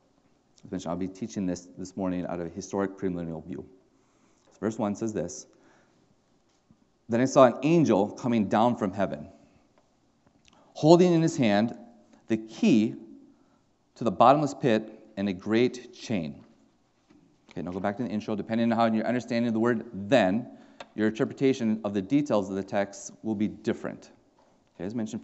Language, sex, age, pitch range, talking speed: English, male, 30-49, 100-135 Hz, 175 wpm